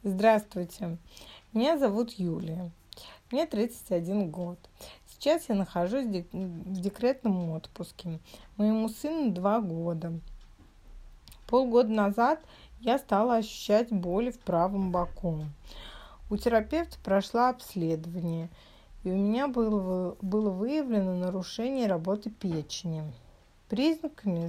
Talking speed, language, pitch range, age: 100 wpm, Russian, 180-230 Hz, 30-49